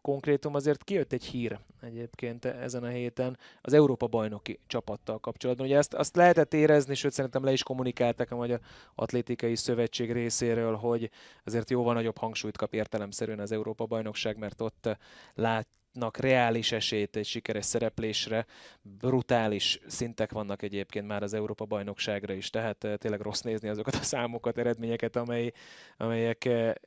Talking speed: 140 wpm